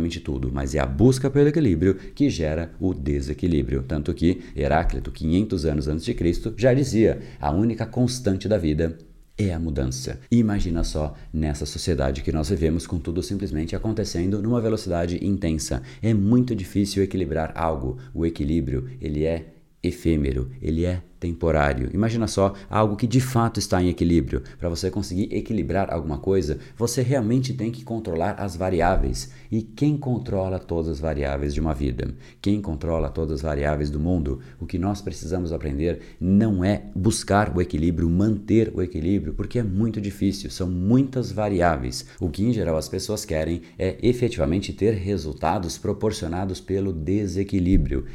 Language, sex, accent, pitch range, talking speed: Portuguese, male, Brazilian, 80-100 Hz, 160 wpm